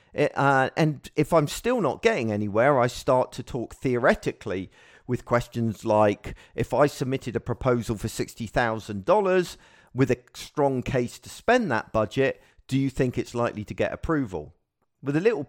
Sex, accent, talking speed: male, British, 165 wpm